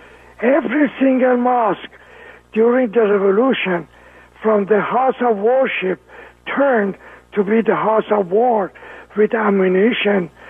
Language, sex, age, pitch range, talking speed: English, male, 60-79, 195-255 Hz, 115 wpm